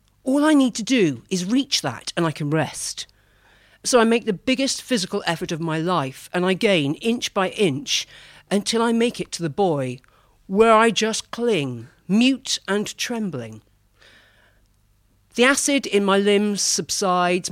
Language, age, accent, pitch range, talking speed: English, 50-69, British, 155-225 Hz, 165 wpm